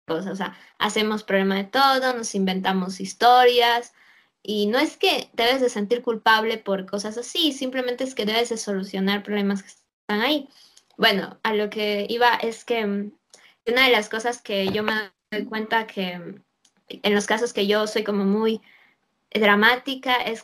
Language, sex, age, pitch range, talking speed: Spanish, female, 20-39, 205-250 Hz, 165 wpm